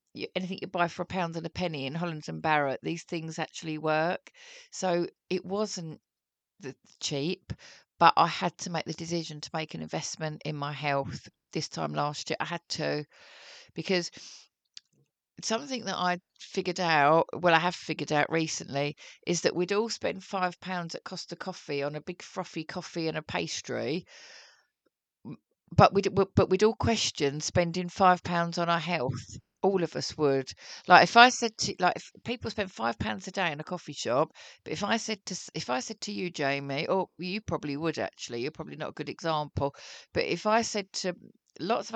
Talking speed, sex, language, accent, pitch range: 195 wpm, female, English, British, 155-190 Hz